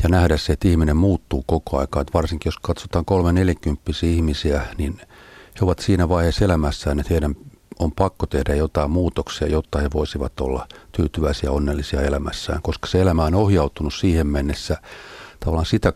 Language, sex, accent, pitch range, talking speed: Finnish, male, native, 75-90 Hz, 170 wpm